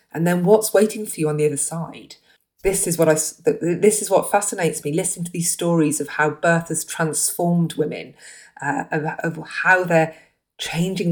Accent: British